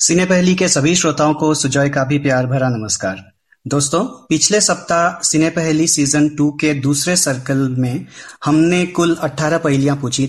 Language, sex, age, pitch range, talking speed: Hindi, male, 30-49, 140-165 Hz, 165 wpm